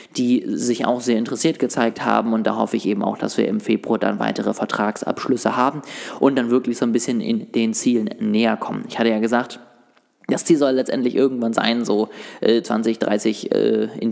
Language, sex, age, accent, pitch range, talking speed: German, male, 20-39, German, 115-130 Hz, 195 wpm